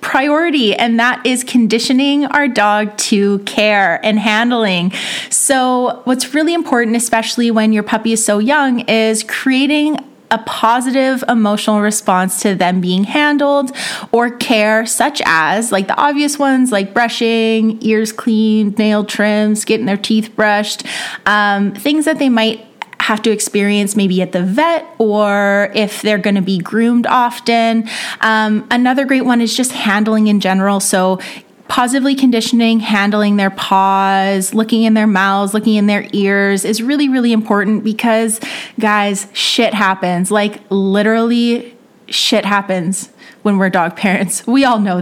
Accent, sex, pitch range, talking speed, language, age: American, female, 205-250 Hz, 150 wpm, English, 30-49